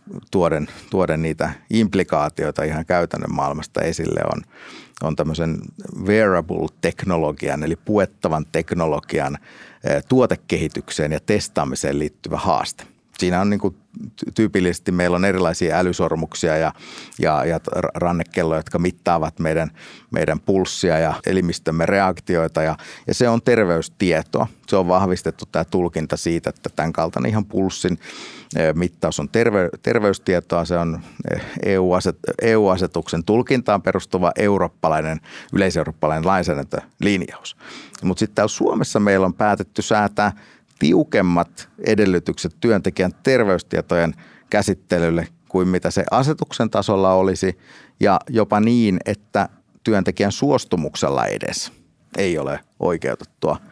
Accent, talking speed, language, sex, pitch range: native, 105 wpm, Finnish, male, 80-100 Hz